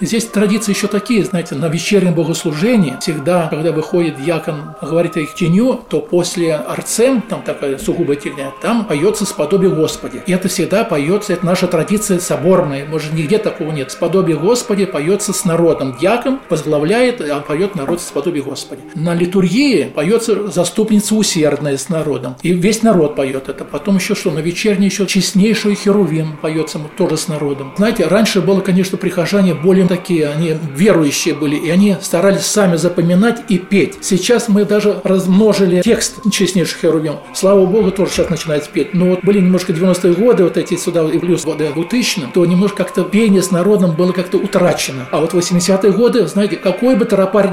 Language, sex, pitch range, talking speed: Russian, male, 165-205 Hz, 170 wpm